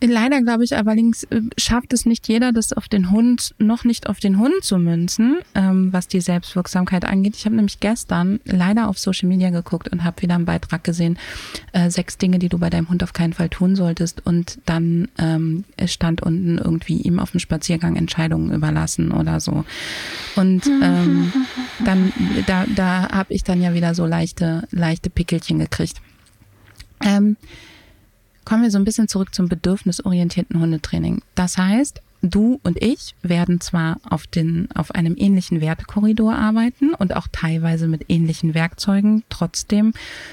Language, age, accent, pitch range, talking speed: German, 30-49, German, 170-215 Hz, 165 wpm